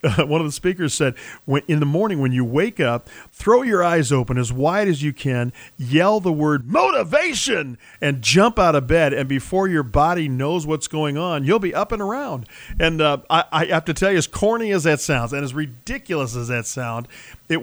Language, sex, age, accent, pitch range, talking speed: English, male, 40-59, American, 130-170 Hz, 220 wpm